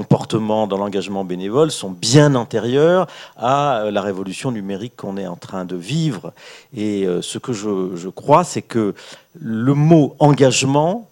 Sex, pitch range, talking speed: male, 105-140 Hz, 150 wpm